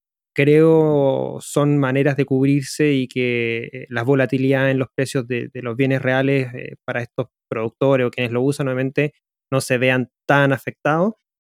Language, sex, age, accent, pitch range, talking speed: Spanish, male, 20-39, Argentinian, 130-150 Hz, 170 wpm